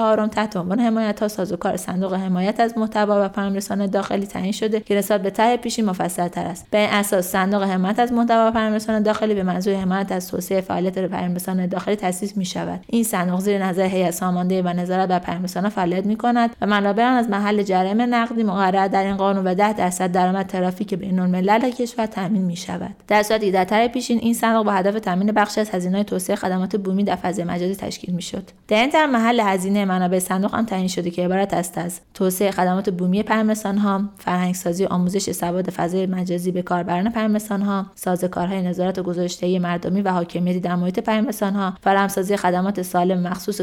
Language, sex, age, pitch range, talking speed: Persian, female, 30-49, 185-215 Hz, 190 wpm